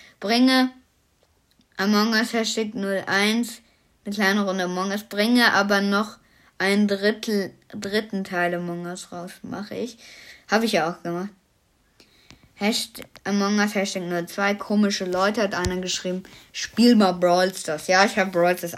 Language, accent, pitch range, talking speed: German, German, 175-210 Hz, 145 wpm